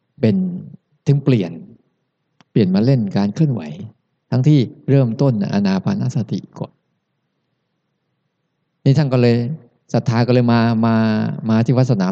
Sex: male